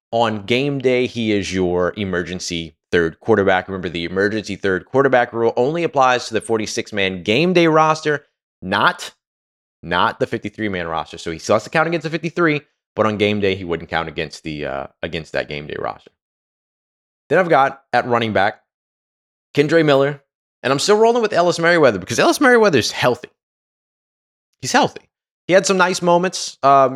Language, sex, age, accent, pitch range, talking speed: English, male, 20-39, American, 100-140 Hz, 185 wpm